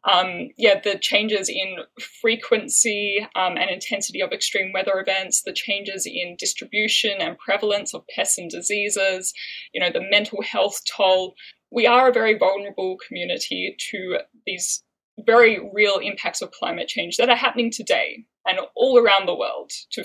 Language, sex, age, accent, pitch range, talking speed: English, female, 10-29, Australian, 195-255 Hz, 160 wpm